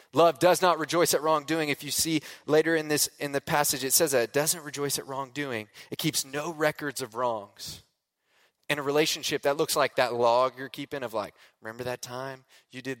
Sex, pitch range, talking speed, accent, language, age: male, 125-155 Hz, 210 wpm, American, English, 20-39